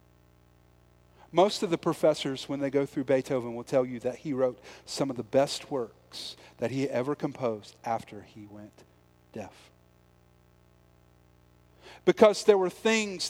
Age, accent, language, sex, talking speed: 40-59, American, English, male, 145 wpm